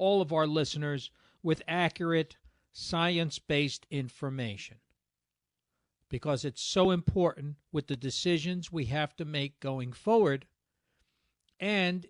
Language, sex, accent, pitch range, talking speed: English, male, American, 125-170 Hz, 110 wpm